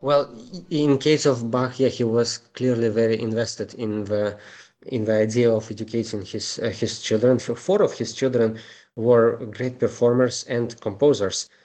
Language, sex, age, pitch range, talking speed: English, male, 20-39, 100-120 Hz, 160 wpm